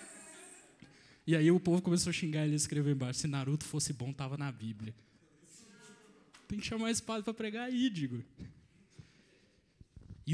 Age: 20-39